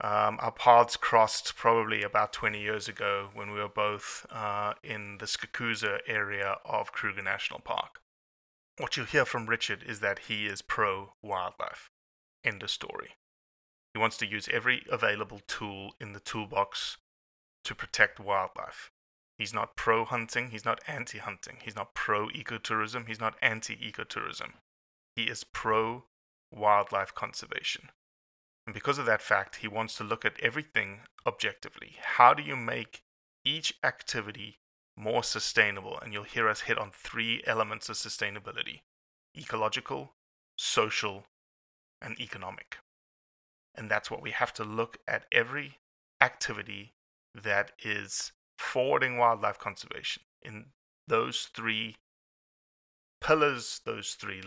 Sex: male